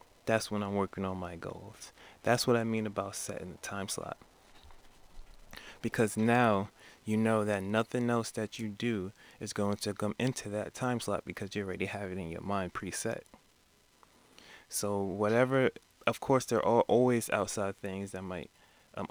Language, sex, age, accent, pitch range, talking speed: English, male, 20-39, American, 100-110 Hz, 175 wpm